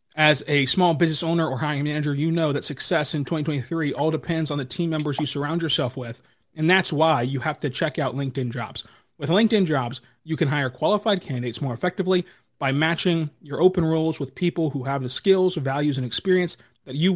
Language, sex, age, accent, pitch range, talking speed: English, male, 30-49, American, 140-175 Hz, 210 wpm